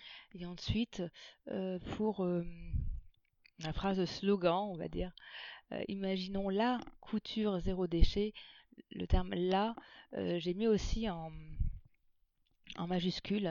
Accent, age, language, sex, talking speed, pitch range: French, 30-49, French, female, 120 wpm, 175-215 Hz